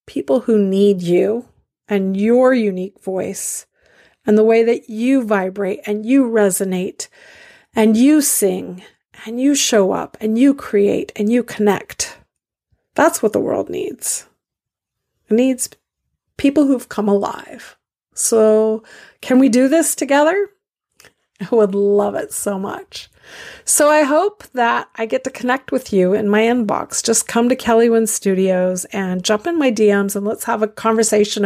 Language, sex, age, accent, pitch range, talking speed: English, female, 40-59, American, 210-260 Hz, 155 wpm